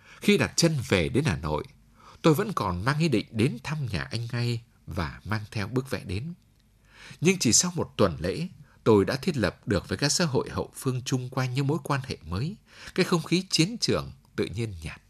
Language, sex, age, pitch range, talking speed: English, male, 60-79, 105-145 Hz, 225 wpm